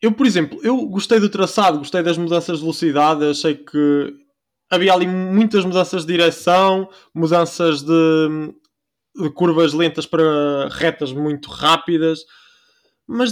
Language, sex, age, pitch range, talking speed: Portuguese, male, 20-39, 155-200 Hz, 135 wpm